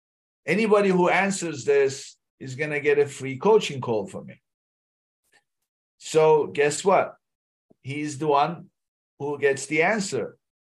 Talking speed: 130 wpm